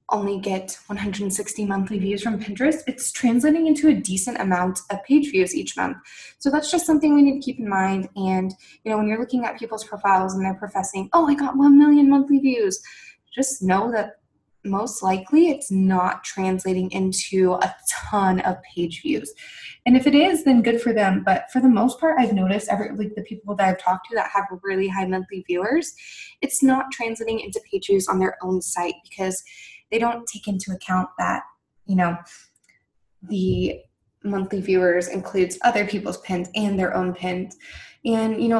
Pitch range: 190-255 Hz